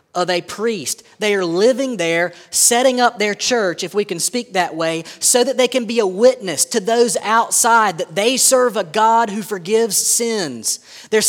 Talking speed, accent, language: 190 wpm, American, English